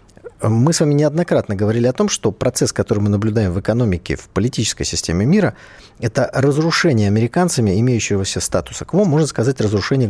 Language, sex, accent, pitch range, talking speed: Russian, male, native, 105-155 Hz, 160 wpm